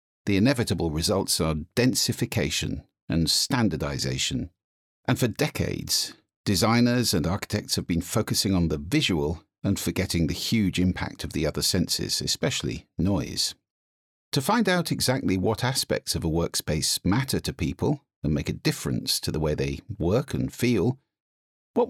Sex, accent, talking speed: male, British, 150 wpm